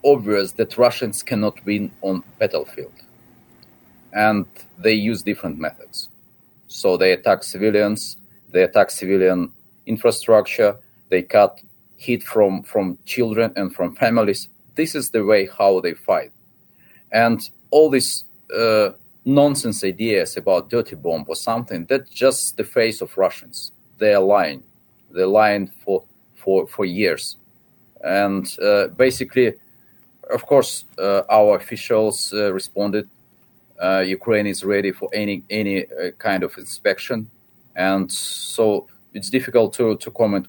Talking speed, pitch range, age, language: 135 wpm, 95-120 Hz, 40-59, English